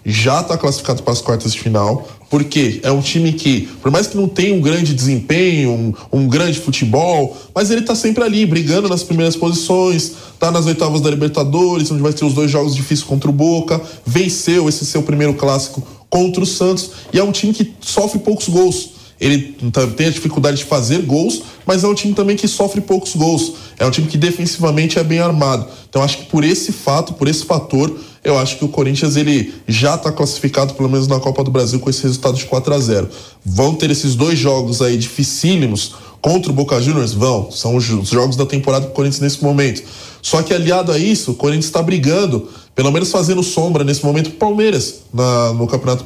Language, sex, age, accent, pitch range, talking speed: English, male, 20-39, Brazilian, 130-175 Hz, 210 wpm